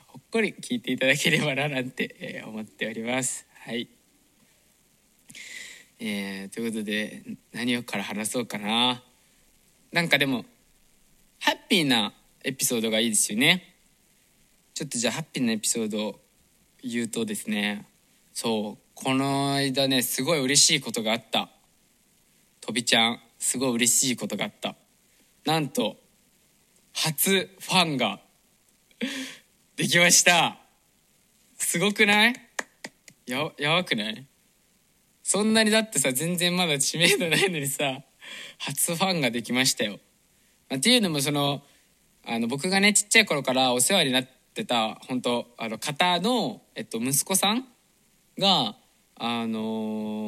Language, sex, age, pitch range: Japanese, male, 20-39, 120-190 Hz